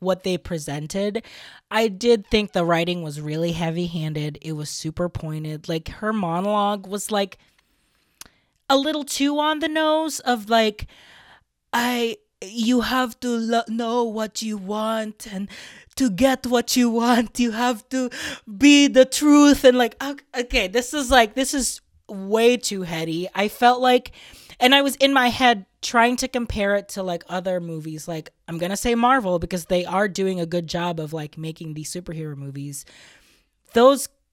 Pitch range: 175-245 Hz